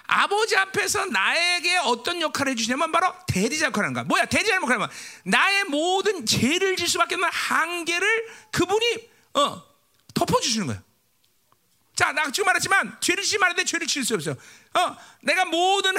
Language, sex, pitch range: Korean, male, 295-415 Hz